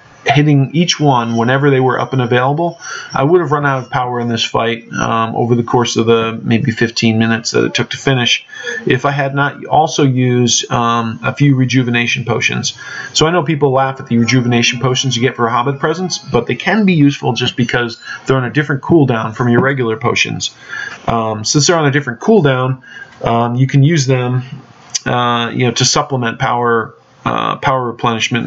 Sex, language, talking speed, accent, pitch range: male, English, 205 wpm, American, 120-145 Hz